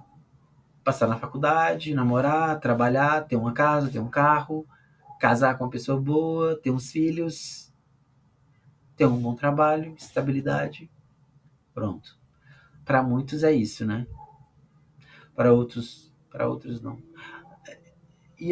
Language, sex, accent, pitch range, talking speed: Portuguese, male, Brazilian, 110-145 Hz, 115 wpm